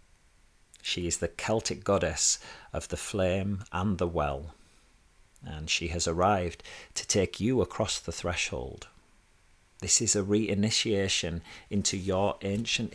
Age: 40-59